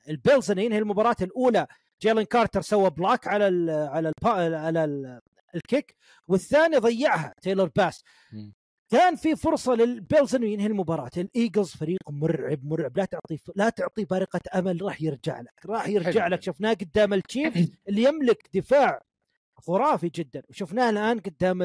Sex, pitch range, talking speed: male, 170-225 Hz, 145 wpm